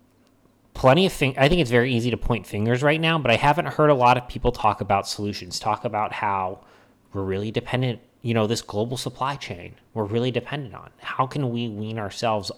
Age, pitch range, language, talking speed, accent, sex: 30-49, 110-140 Hz, English, 215 wpm, American, male